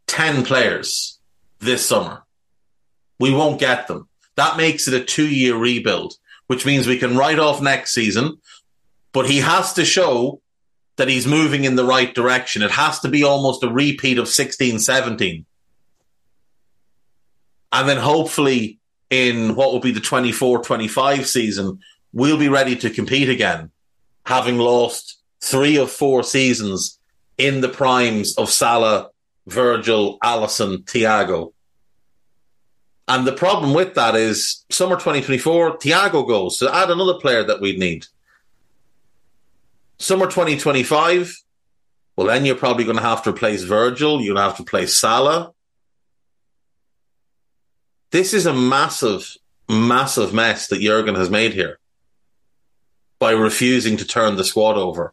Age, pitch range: 30-49, 115-140 Hz